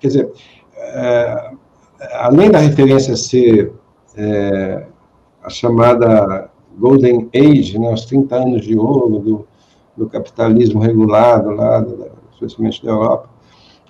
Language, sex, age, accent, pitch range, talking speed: English, male, 60-79, Brazilian, 110-155 Hz, 105 wpm